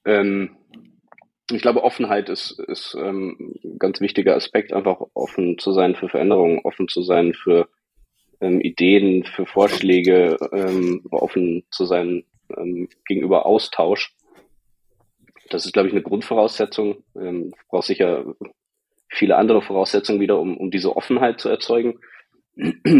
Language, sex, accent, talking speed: German, male, German, 120 wpm